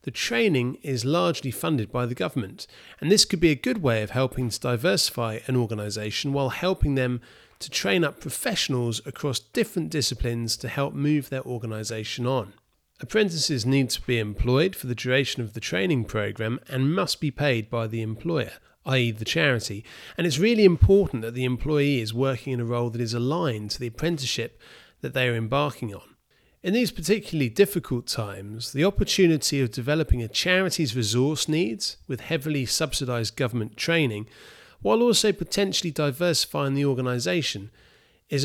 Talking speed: 165 wpm